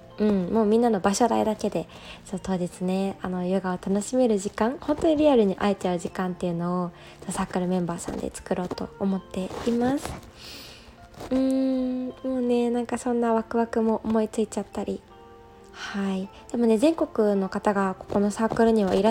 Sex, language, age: female, Japanese, 20-39